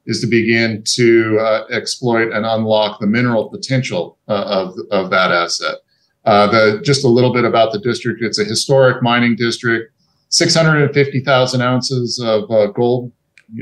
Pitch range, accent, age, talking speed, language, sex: 110-130 Hz, American, 40-59, 175 wpm, English, male